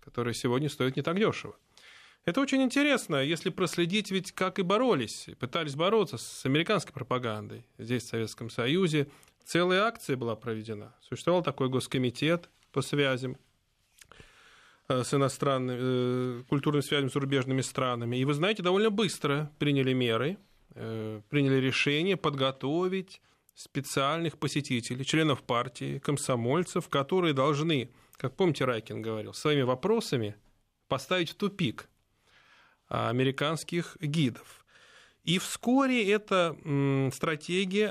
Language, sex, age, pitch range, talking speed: Russian, male, 20-39, 130-170 Hz, 110 wpm